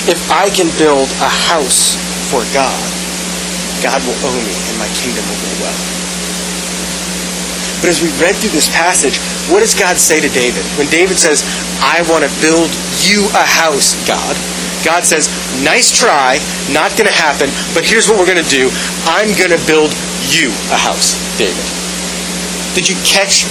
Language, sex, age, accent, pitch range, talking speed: English, male, 30-49, American, 155-200 Hz, 175 wpm